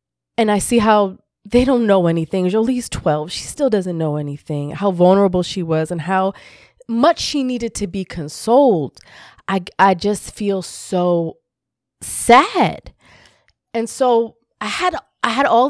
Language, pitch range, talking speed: English, 170-245 Hz, 155 wpm